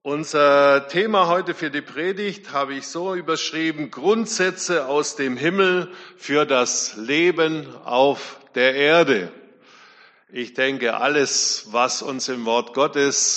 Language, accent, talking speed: German, German, 125 wpm